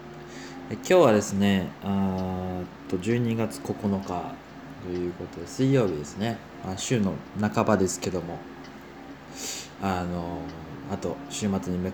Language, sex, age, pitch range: Japanese, male, 20-39, 90-115 Hz